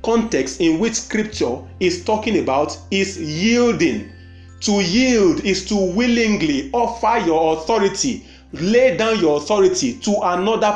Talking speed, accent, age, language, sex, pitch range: 130 wpm, Nigerian, 30-49, English, male, 175-240 Hz